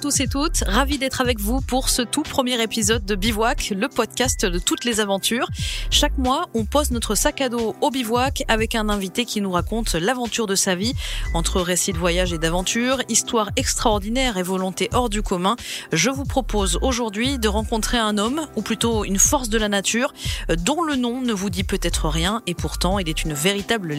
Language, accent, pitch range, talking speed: French, French, 175-235 Hz, 205 wpm